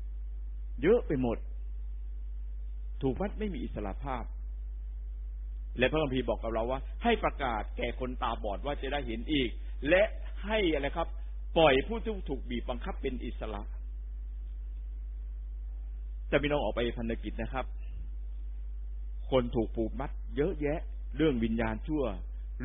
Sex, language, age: male, Thai, 60-79